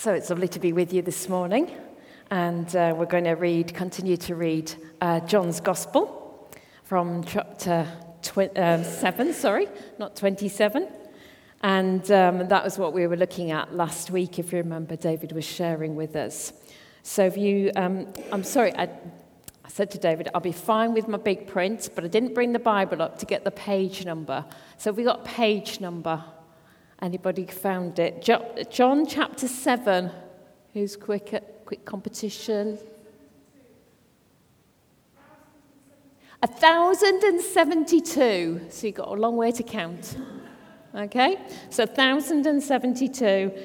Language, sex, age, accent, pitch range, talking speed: English, female, 40-59, British, 175-235 Hz, 145 wpm